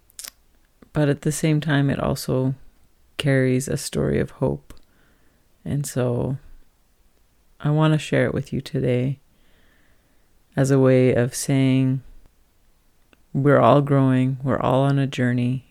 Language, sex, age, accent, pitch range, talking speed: English, female, 30-49, American, 90-140 Hz, 130 wpm